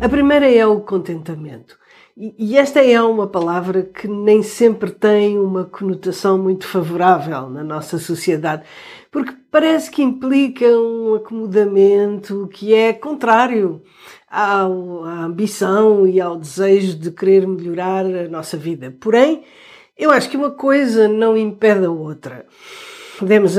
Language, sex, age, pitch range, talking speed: Portuguese, female, 50-69, 180-240 Hz, 130 wpm